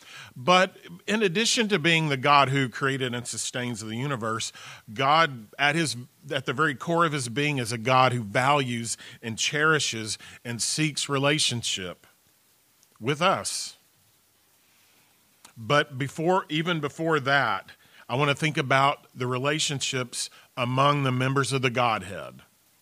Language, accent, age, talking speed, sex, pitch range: English, American, 40-59, 140 wpm, male, 120-145 Hz